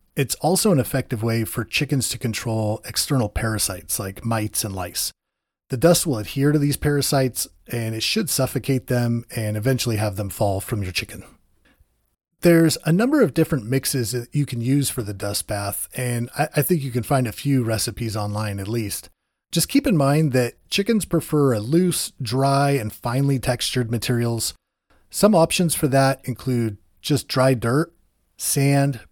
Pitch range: 110-145 Hz